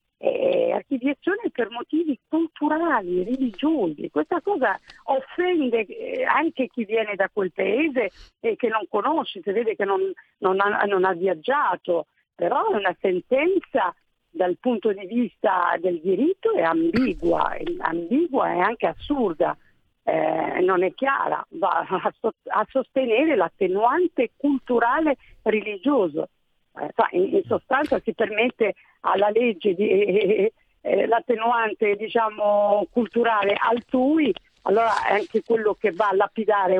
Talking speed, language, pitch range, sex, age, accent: 125 wpm, Italian, 210-325 Hz, female, 50-69, native